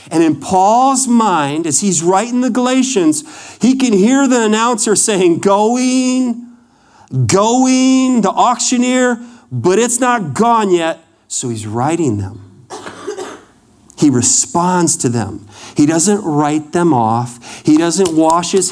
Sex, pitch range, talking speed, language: male, 125-185 Hz, 130 wpm, English